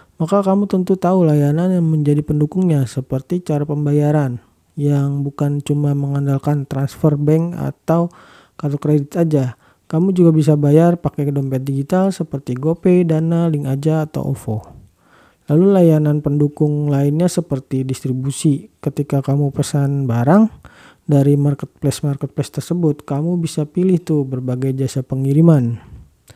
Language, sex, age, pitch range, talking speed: Indonesian, male, 40-59, 135-170 Hz, 125 wpm